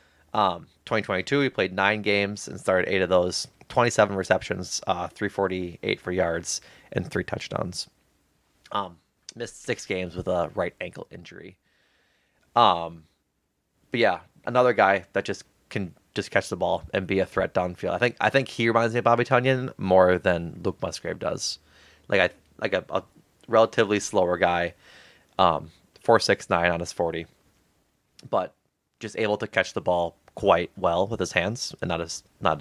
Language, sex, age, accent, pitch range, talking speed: English, male, 20-39, American, 90-110 Hz, 175 wpm